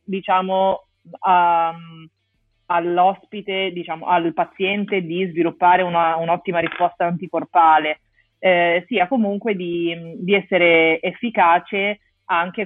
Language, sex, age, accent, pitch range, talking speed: Italian, female, 30-49, native, 165-190 Hz, 95 wpm